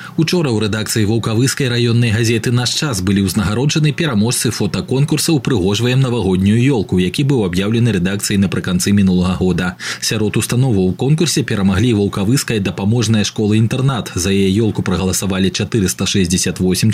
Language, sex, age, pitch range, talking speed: Russian, male, 20-39, 95-130 Hz, 135 wpm